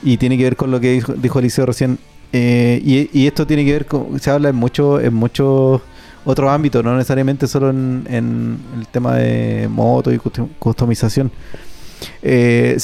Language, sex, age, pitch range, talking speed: Spanish, male, 30-49, 125-150 Hz, 180 wpm